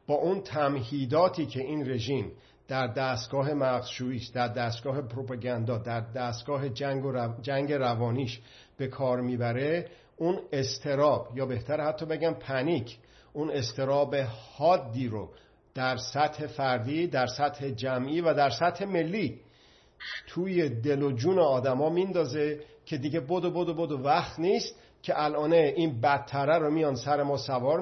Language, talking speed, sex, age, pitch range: Persian, 140 wpm, male, 50-69, 130-155 Hz